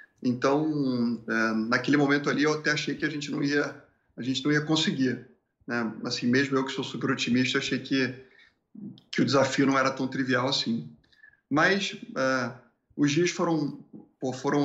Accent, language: Brazilian, English